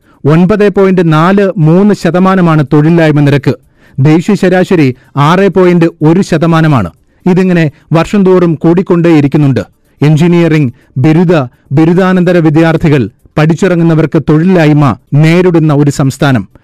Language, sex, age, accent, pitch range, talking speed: Malayalam, male, 30-49, native, 150-185 Hz, 90 wpm